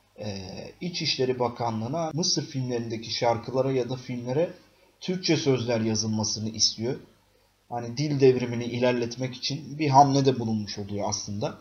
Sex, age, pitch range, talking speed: male, 30-49, 110-145 Hz, 125 wpm